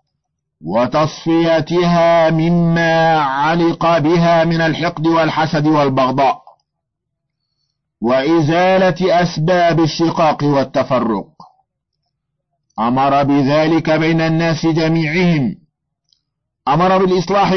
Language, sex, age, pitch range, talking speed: Arabic, male, 50-69, 145-175 Hz, 65 wpm